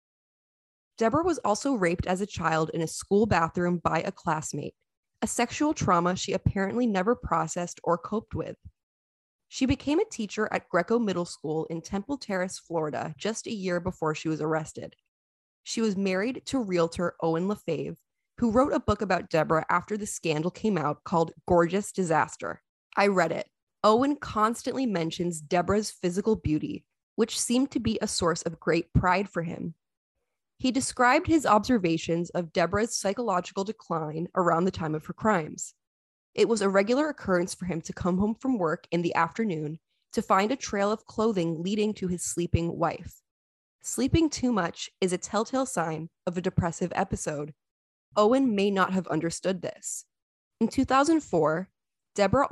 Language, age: English, 20-39